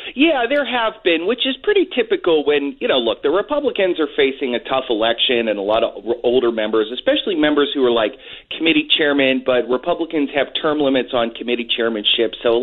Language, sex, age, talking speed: English, male, 30-49, 200 wpm